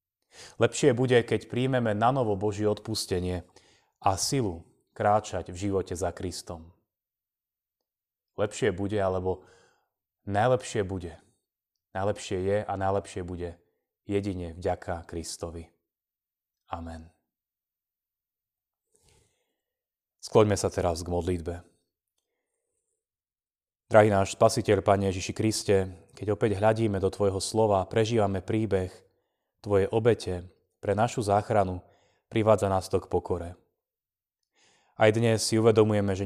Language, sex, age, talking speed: Slovak, male, 30-49, 105 wpm